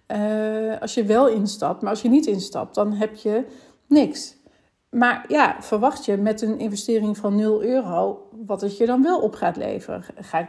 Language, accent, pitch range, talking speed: Dutch, Dutch, 205-265 Hz, 185 wpm